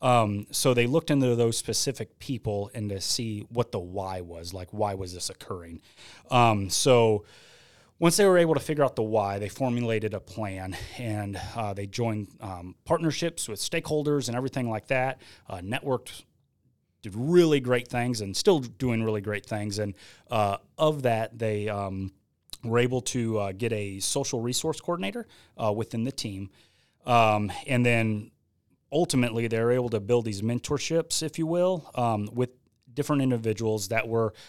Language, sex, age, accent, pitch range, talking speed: English, male, 30-49, American, 105-125 Hz, 170 wpm